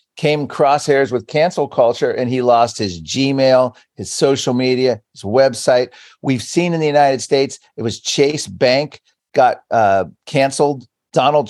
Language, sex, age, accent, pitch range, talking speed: English, male, 40-59, American, 120-145 Hz, 150 wpm